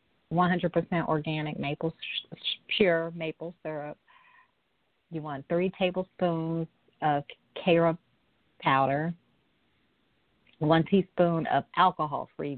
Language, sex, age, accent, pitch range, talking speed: English, female, 50-69, American, 140-170 Hz, 75 wpm